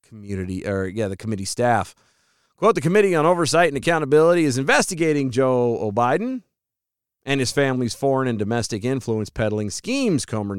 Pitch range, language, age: 100-155 Hz, English, 30-49